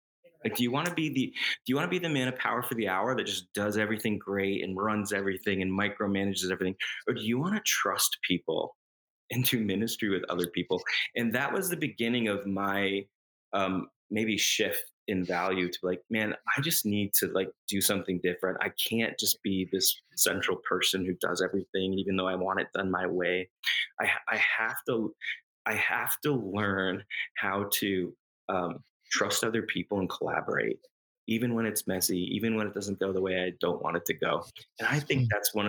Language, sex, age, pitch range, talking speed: English, male, 20-39, 95-110 Hz, 205 wpm